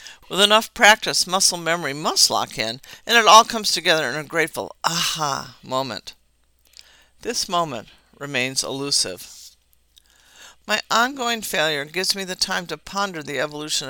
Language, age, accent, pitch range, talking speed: English, 50-69, American, 140-205 Hz, 145 wpm